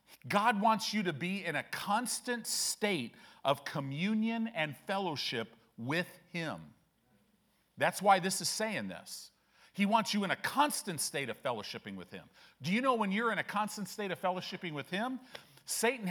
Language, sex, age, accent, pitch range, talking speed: English, male, 40-59, American, 170-225 Hz, 170 wpm